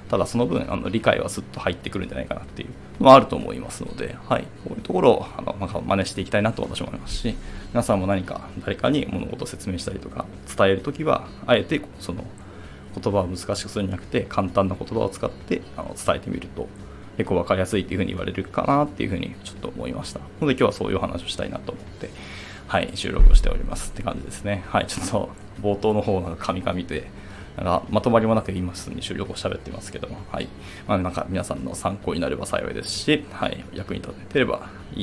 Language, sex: Japanese, male